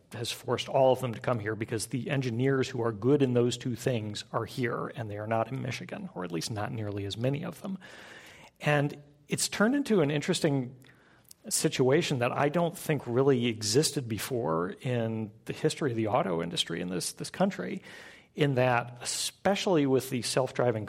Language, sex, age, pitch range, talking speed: English, male, 40-59, 115-155 Hz, 190 wpm